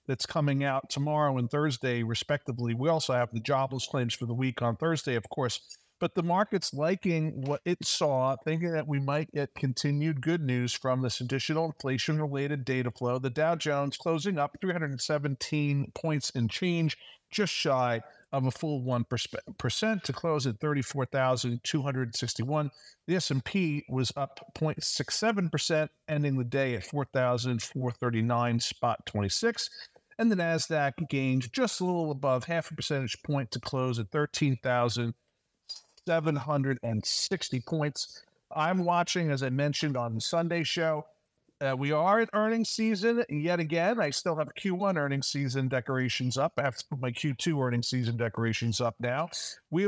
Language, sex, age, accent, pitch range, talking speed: English, male, 50-69, American, 130-165 Hz, 155 wpm